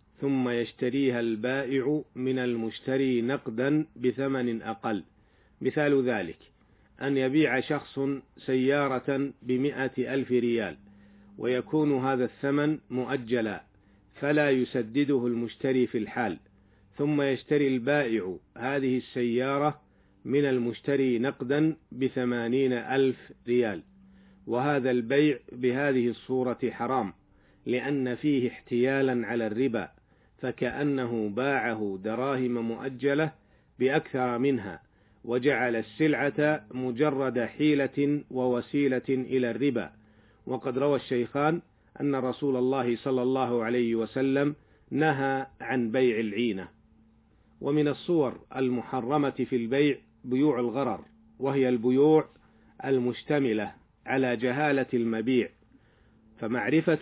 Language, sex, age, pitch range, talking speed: Arabic, male, 50-69, 120-140 Hz, 95 wpm